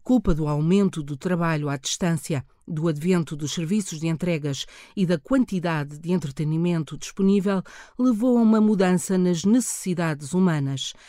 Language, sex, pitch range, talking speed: Portuguese, female, 160-210 Hz, 140 wpm